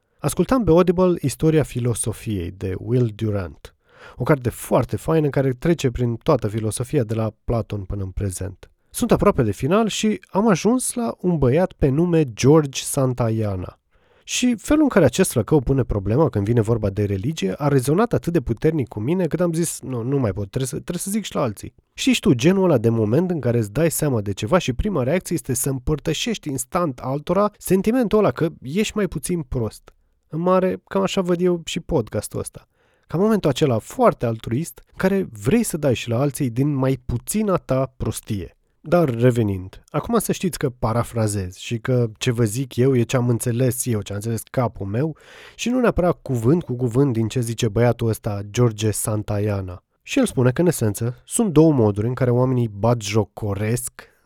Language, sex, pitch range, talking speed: Romanian, male, 115-175 Hz, 190 wpm